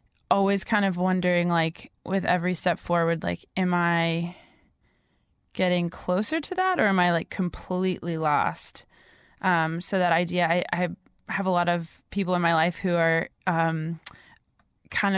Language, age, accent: English, 20-39, American